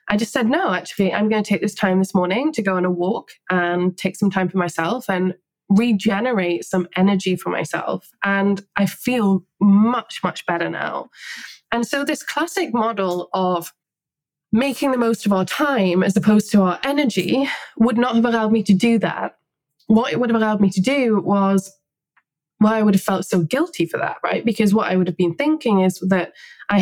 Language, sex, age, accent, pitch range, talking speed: English, female, 20-39, British, 180-225 Hz, 205 wpm